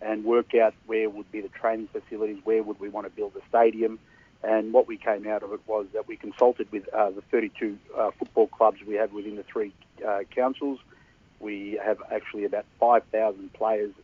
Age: 50-69